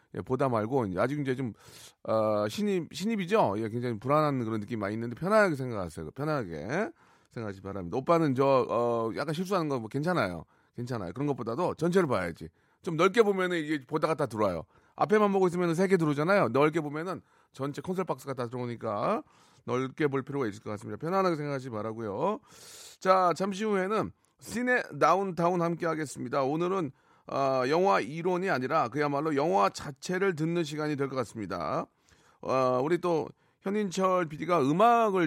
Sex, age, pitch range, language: male, 40-59, 130-185 Hz, Korean